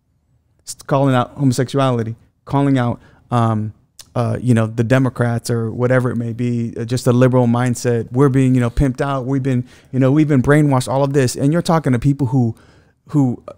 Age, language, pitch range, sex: 30-49, English, 120-150 Hz, male